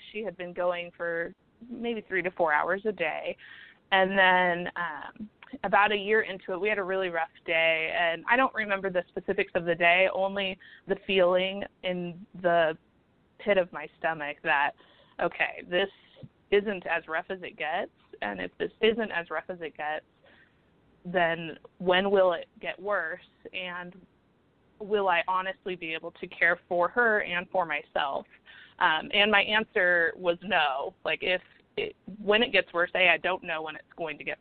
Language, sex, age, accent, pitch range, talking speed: English, female, 20-39, American, 170-200 Hz, 180 wpm